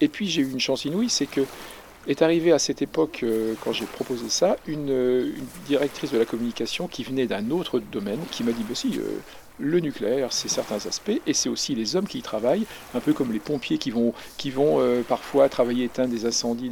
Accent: French